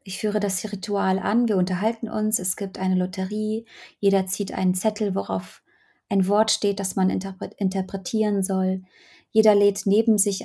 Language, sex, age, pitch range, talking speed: Polish, female, 20-39, 185-205 Hz, 160 wpm